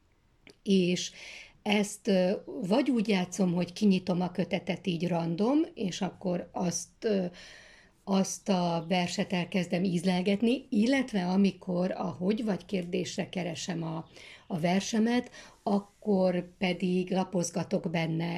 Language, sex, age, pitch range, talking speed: Hungarian, female, 60-79, 175-200 Hz, 110 wpm